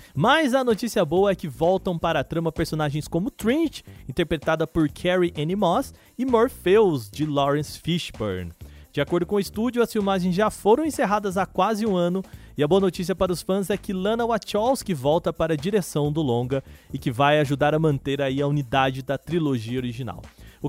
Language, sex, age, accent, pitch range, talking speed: Portuguese, male, 20-39, Brazilian, 145-220 Hz, 195 wpm